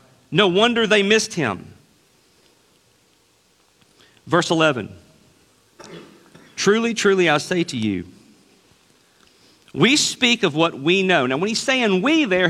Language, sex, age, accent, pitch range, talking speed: English, male, 40-59, American, 155-220 Hz, 120 wpm